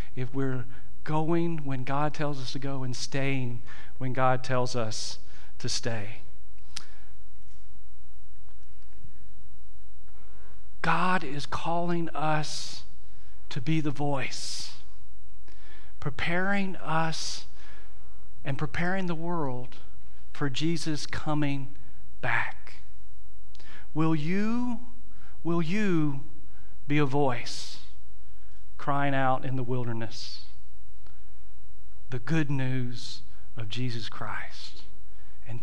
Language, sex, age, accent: English, male, 40-59, American